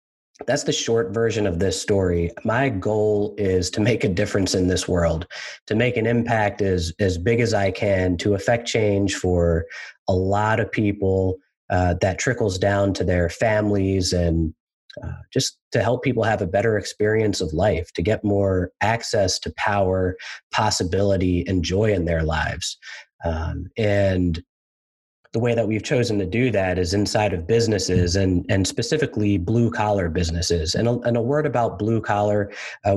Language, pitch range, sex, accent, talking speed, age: English, 95-115 Hz, male, American, 175 wpm, 30-49